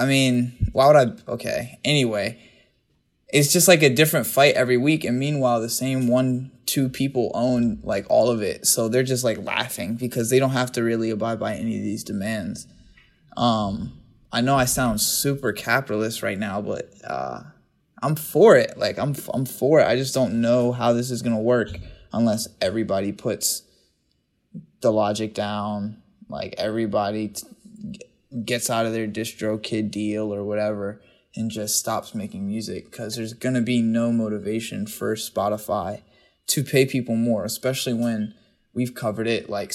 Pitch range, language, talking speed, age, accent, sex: 110-125 Hz, English, 175 wpm, 20-39, American, male